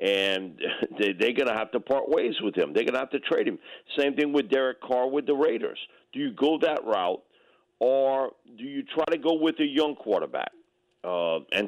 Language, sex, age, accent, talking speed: English, male, 50-69, American, 210 wpm